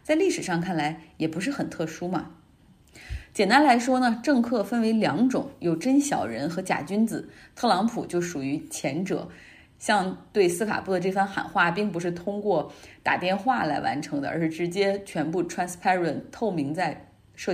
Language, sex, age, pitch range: Chinese, female, 20-39, 160-230 Hz